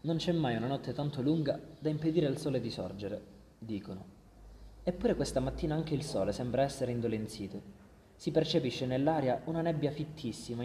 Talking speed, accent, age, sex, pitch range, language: 165 wpm, native, 20-39, male, 115-145 Hz, Italian